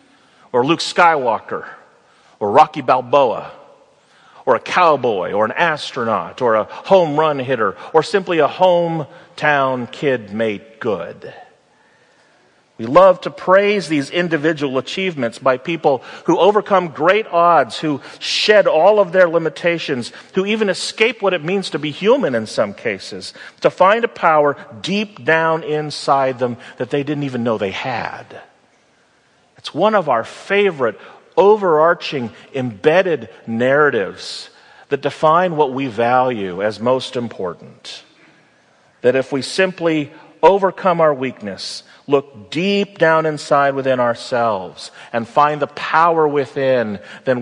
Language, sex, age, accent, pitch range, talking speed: English, male, 40-59, American, 130-190 Hz, 135 wpm